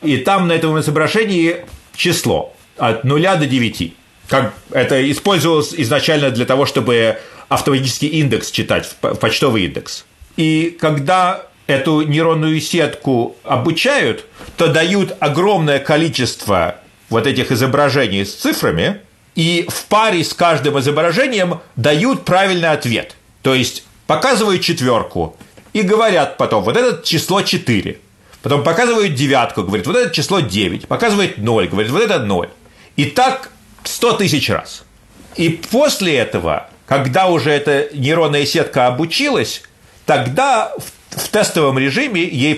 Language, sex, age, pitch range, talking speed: Russian, male, 40-59, 130-175 Hz, 125 wpm